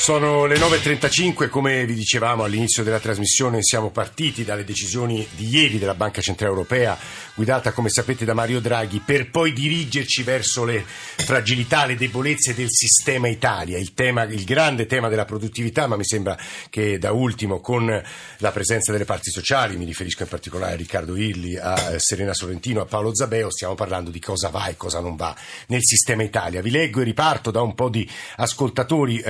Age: 50-69